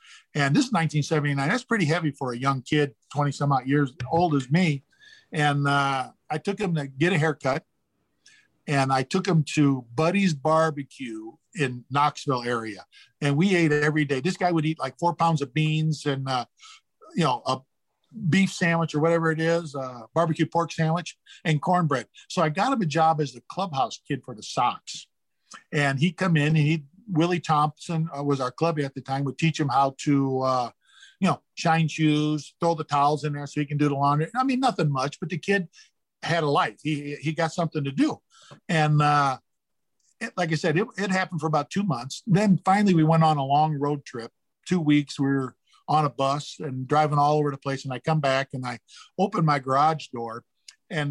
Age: 50-69